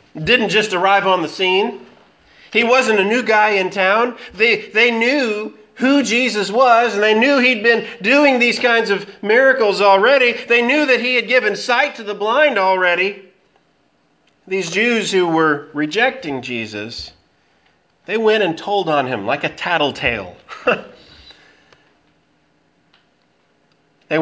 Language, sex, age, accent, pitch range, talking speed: English, male, 40-59, American, 145-215 Hz, 140 wpm